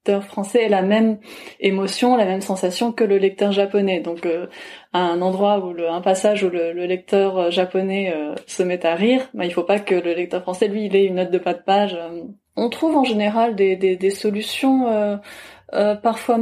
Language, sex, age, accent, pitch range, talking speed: French, female, 20-39, French, 185-220 Hz, 220 wpm